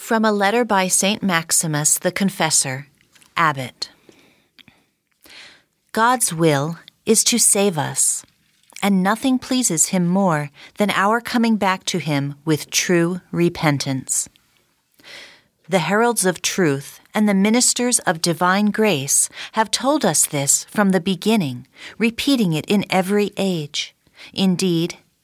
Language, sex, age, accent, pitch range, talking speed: English, female, 40-59, American, 165-220 Hz, 125 wpm